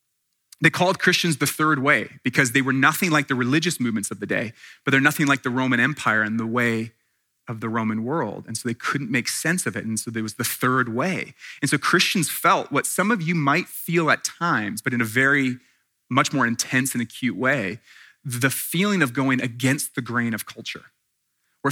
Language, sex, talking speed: English, male, 215 wpm